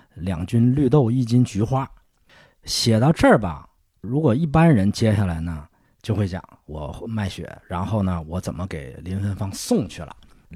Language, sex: Chinese, male